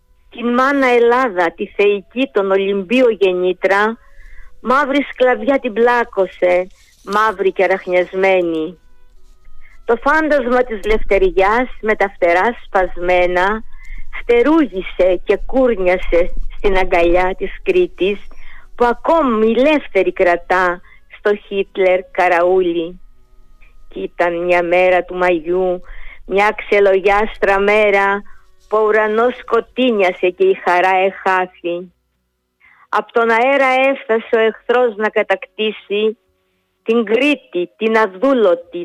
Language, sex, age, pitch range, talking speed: Greek, female, 50-69, 180-235 Hz, 100 wpm